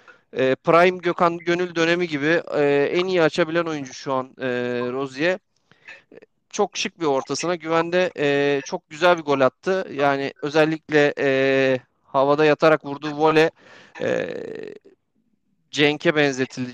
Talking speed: 110 wpm